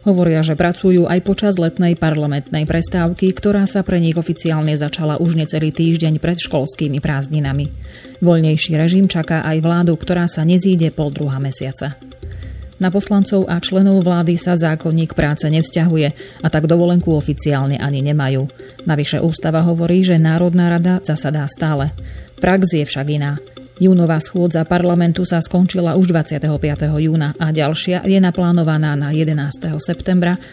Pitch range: 150-175 Hz